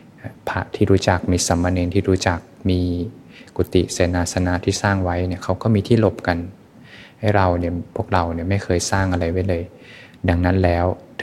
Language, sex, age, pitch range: Thai, male, 20-39, 85-100 Hz